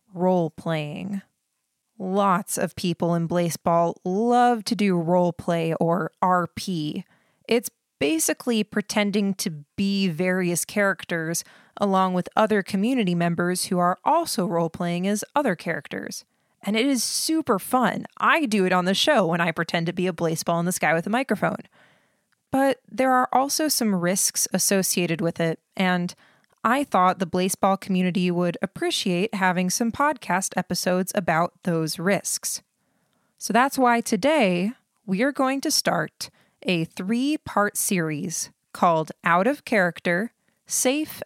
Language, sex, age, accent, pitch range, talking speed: English, female, 20-39, American, 175-230 Hz, 140 wpm